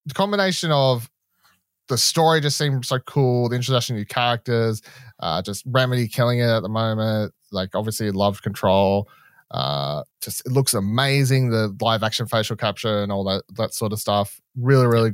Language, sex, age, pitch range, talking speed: English, male, 20-39, 105-135 Hz, 180 wpm